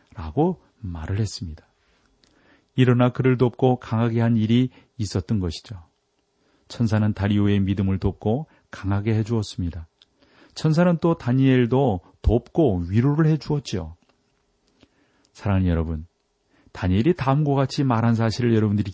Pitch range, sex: 100-140 Hz, male